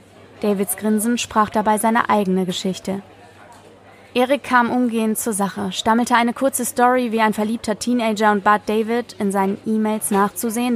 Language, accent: German, German